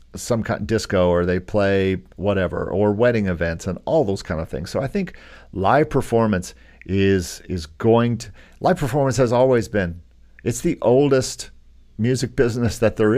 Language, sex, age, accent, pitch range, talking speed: English, male, 50-69, American, 85-110 Hz, 175 wpm